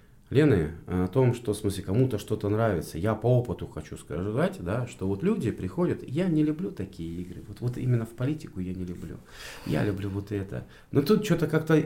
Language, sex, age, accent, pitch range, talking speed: Russian, male, 40-59, native, 100-135 Hz, 200 wpm